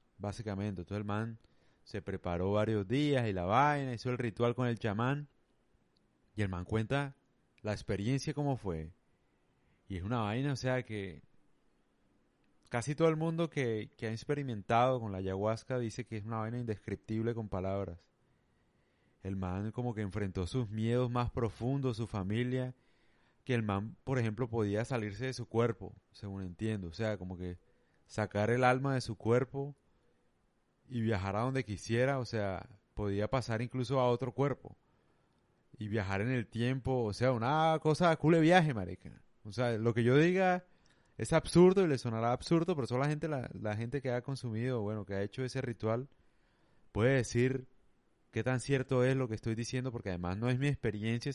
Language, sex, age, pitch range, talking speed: Spanish, male, 30-49, 105-130 Hz, 180 wpm